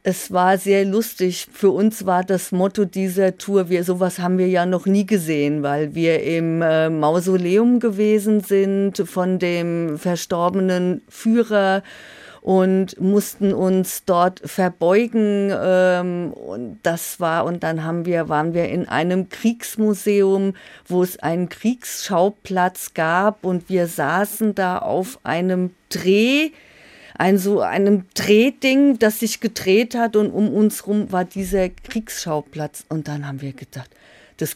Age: 50-69